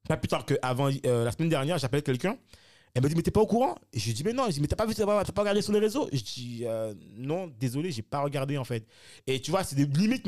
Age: 30-49